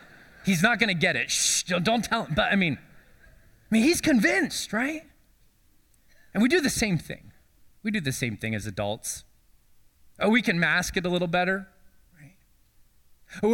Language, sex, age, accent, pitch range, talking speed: English, male, 20-39, American, 135-185 Hz, 175 wpm